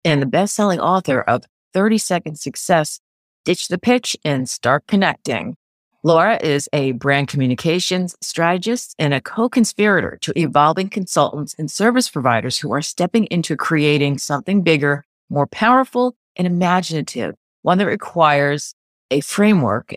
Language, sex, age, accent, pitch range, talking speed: English, female, 40-59, American, 140-195 Hz, 135 wpm